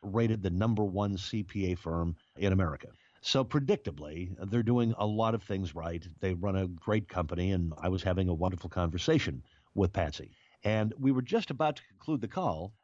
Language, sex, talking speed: English, male, 185 wpm